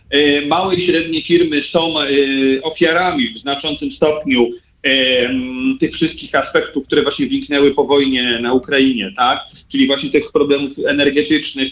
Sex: male